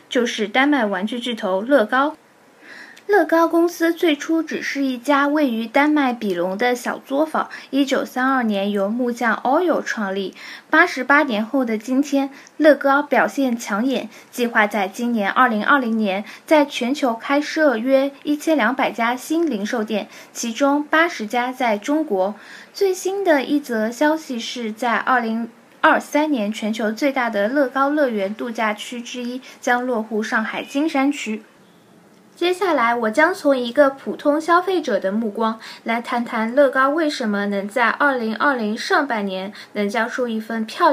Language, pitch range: Chinese, 220-290 Hz